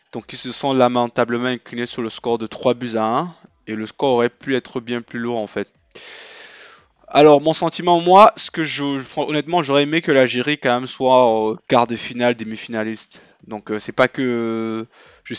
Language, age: French, 20-39